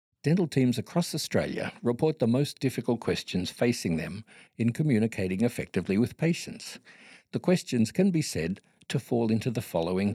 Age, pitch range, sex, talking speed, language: 60-79, 110-165 Hz, male, 155 wpm, English